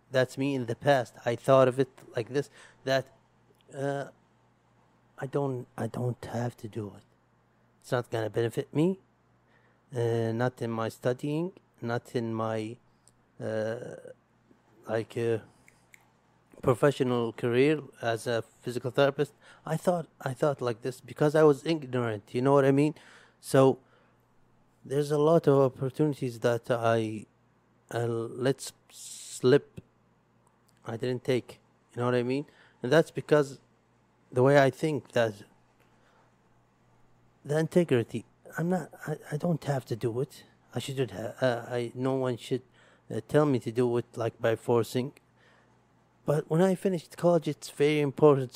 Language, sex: Arabic, male